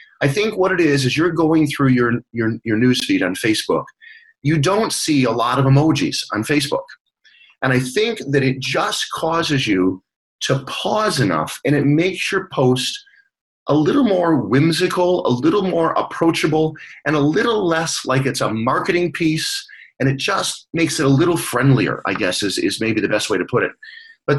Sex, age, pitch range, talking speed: male, 30-49, 130-175 Hz, 185 wpm